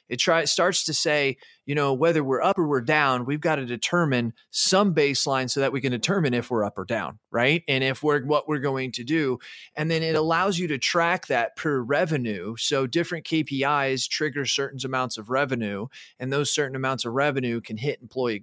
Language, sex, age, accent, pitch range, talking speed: English, male, 30-49, American, 120-145 Hz, 210 wpm